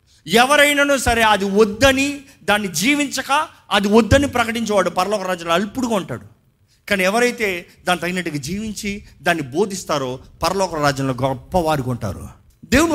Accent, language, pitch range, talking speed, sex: native, Telugu, 145-230 Hz, 115 wpm, male